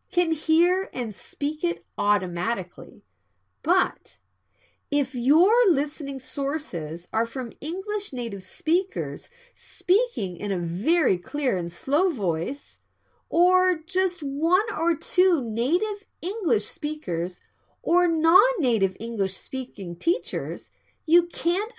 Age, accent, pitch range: 40-59, American, 215-360 Hz